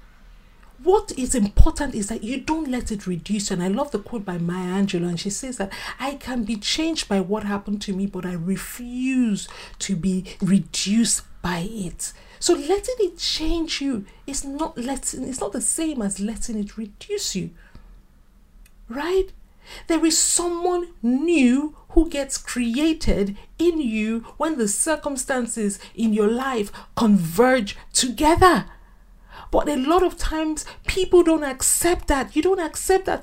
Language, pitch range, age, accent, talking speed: English, 210-315 Hz, 50-69, Nigerian, 155 wpm